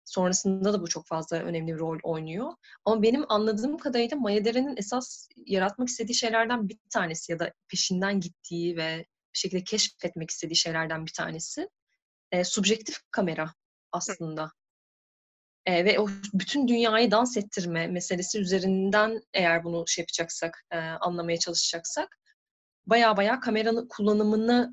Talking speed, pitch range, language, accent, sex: 130 wpm, 170-225 Hz, Turkish, native, female